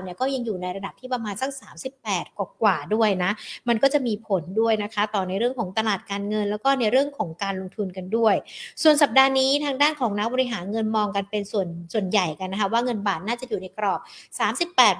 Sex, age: female, 60-79